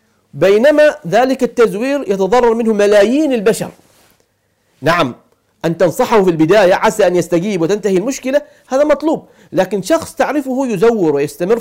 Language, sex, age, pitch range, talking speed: English, male, 50-69, 170-245 Hz, 125 wpm